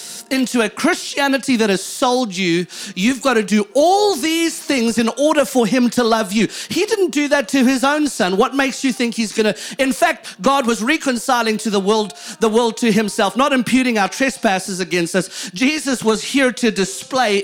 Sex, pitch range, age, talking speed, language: male, 225-290 Hz, 40-59, 200 wpm, English